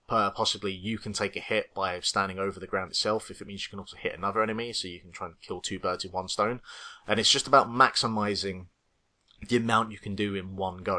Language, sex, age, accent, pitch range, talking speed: English, male, 20-39, British, 95-120 Hz, 250 wpm